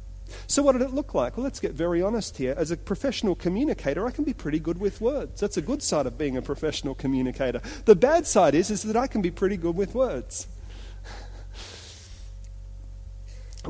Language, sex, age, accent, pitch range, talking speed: English, male, 40-59, Australian, 120-180 Hz, 200 wpm